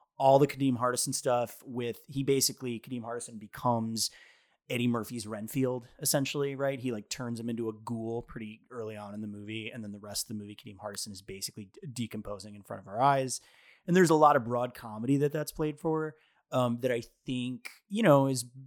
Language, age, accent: English, 30-49, American